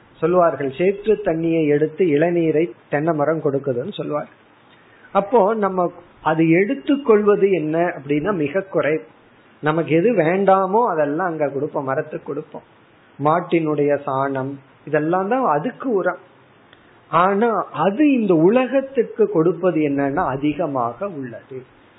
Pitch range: 150-200 Hz